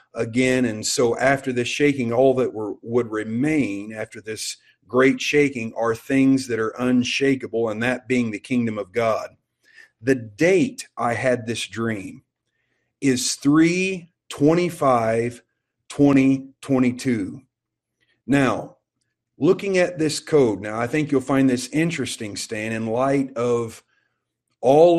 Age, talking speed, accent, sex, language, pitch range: 40-59, 130 wpm, American, male, English, 120-150 Hz